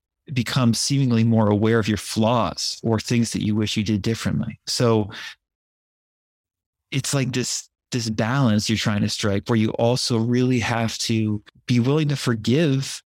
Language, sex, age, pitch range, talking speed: English, male, 30-49, 105-120 Hz, 160 wpm